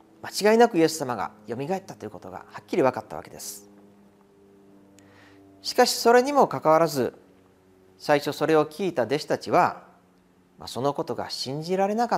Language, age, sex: Japanese, 40-59, male